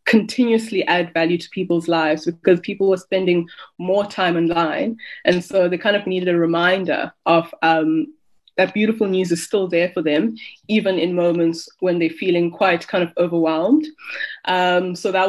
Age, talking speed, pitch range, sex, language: 20-39, 175 wpm, 170-195 Hz, female, English